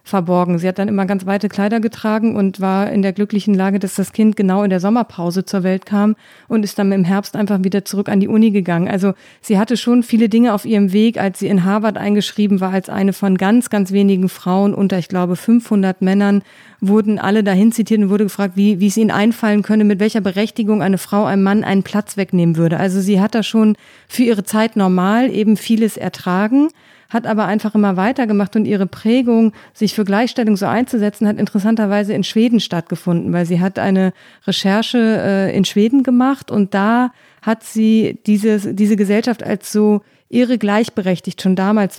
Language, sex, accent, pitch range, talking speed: German, female, German, 195-220 Hz, 200 wpm